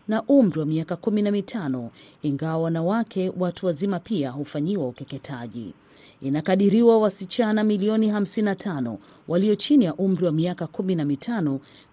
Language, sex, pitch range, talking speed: Swahili, female, 150-200 Hz, 115 wpm